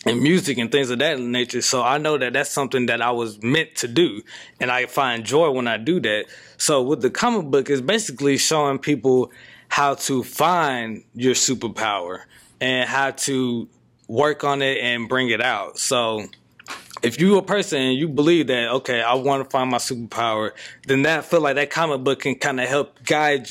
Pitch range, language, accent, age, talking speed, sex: 120-145 Hz, English, American, 20-39, 200 wpm, male